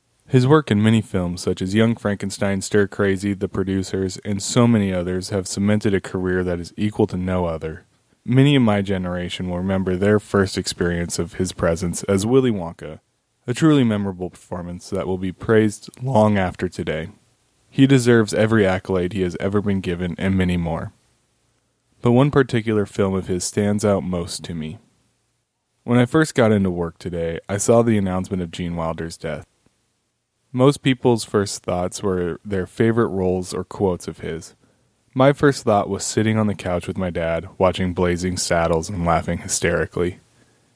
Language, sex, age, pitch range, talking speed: English, male, 20-39, 90-110 Hz, 175 wpm